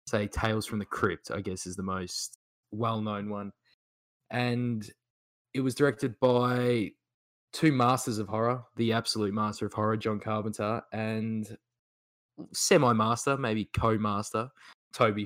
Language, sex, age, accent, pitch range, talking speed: English, male, 20-39, Australian, 105-125 Hz, 130 wpm